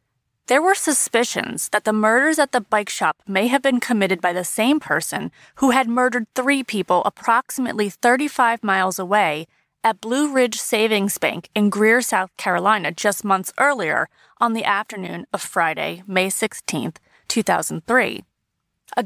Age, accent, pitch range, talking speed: 30-49, American, 195-255 Hz, 150 wpm